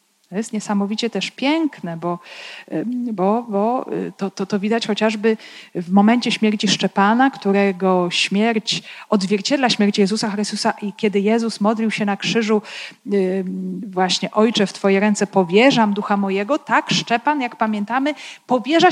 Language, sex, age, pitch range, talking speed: Polish, female, 40-59, 195-235 Hz, 135 wpm